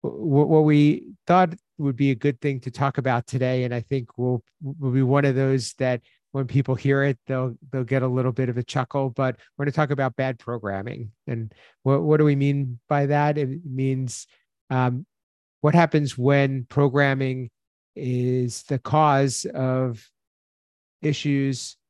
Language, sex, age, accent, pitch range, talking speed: English, male, 50-69, American, 120-140 Hz, 170 wpm